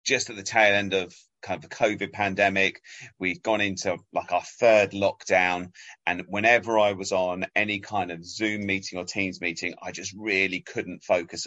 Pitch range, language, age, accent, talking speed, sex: 90-110 Hz, English, 30-49, British, 190 wpm, male